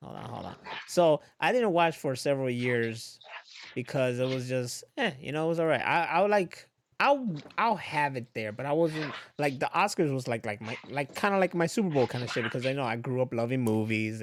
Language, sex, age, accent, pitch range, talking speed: English, male, 20-39, American, 115-150 Hz, 240 wpm